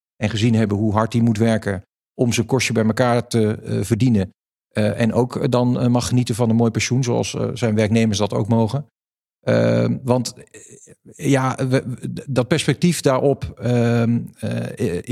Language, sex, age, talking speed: Dutch, male, 50-69, 175 wpm